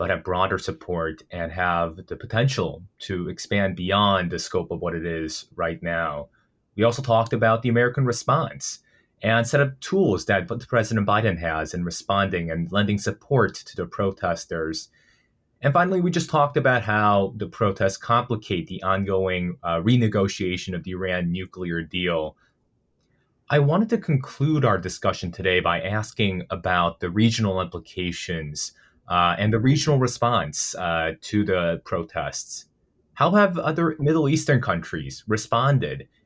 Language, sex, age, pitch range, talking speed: English, male, 30-49, 90-120 Hz, 150 wpm